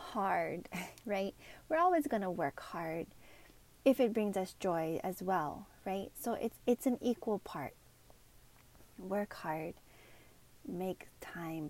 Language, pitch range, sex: English, 170-220 Hz, female